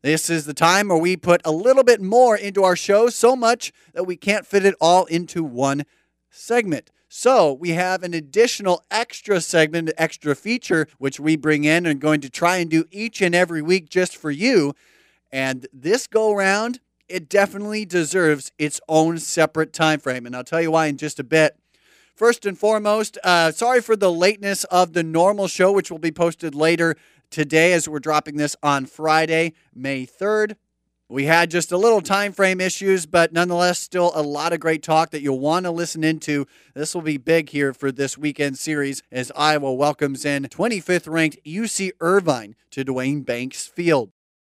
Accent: American